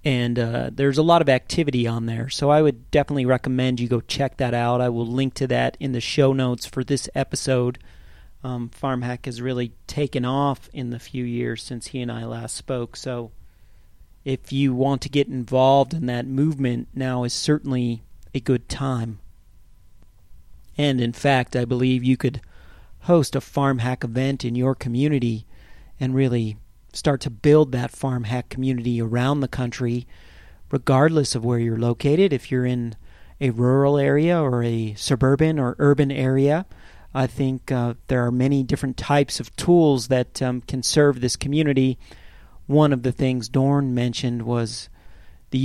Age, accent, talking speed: 40-59, American, 170 wpm